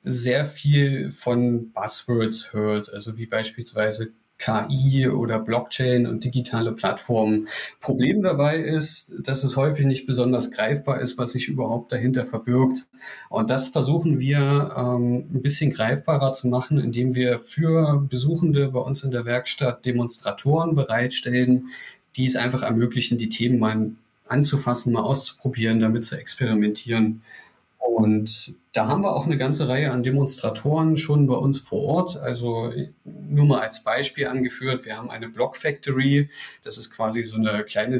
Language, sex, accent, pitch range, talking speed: German, male, German, 115-140 Hz, 150 wpm